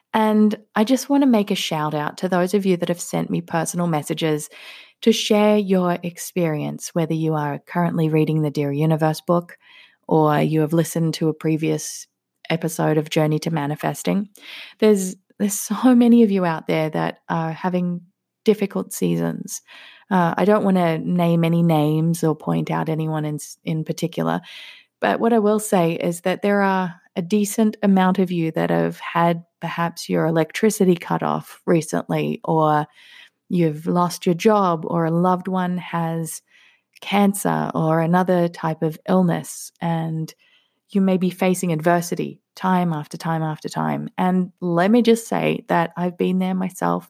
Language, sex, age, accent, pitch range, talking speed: English, female, 20-39, Australian, 160-195 Hz, 170 wpm